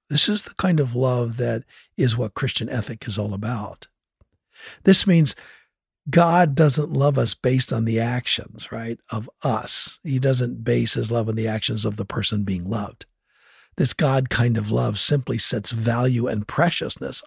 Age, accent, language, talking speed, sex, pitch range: 60-79, American, English, 175 wpm, male, 110-135 Hz